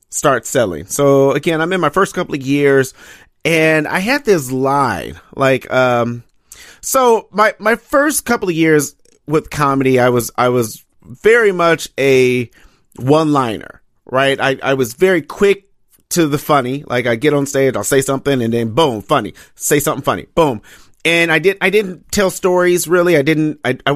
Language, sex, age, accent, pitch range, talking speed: English, male, 40-59, American, 130-170 Hz, 180 wpm